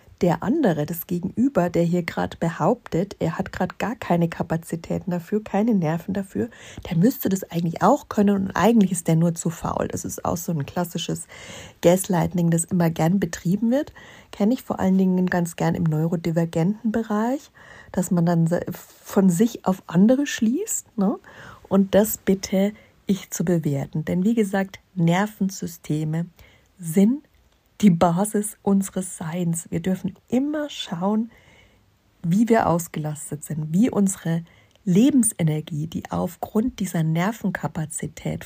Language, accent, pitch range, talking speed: German, German, 170-205 Hz, 140 wpm